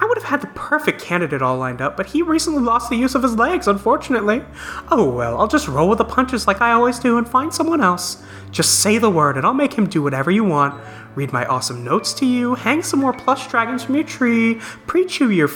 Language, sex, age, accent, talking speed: English, male, 30-49, American, 245 wpm